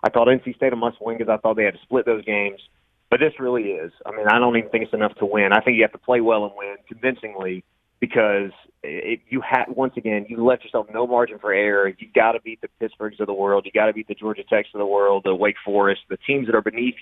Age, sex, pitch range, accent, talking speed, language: 30-49, male, 100-125 Hz, American, 280 wpm, English